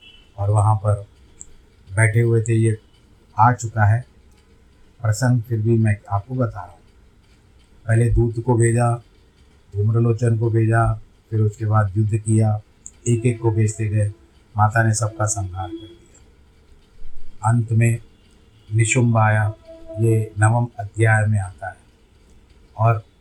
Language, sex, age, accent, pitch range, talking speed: Hindi, male, 50-69, native, 100-115 Hz, 135 wpm